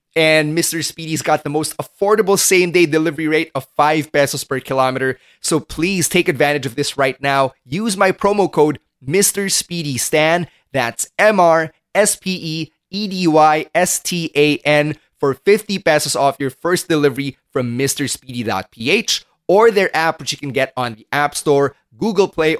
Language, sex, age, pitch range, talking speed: English, male, 20-39, 145-190 Hz, 140 wpm